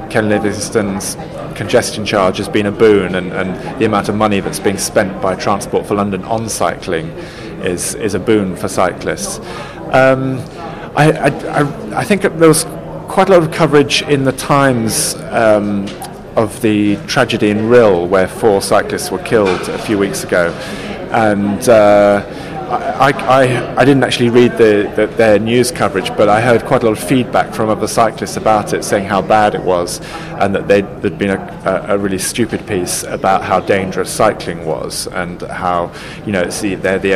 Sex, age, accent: male, 30-49, British